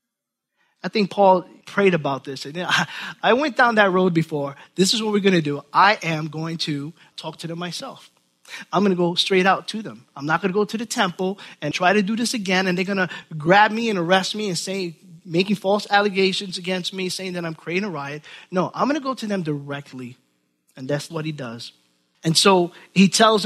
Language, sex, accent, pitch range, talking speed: English, male, American, 155-210 Hz, 225 wpm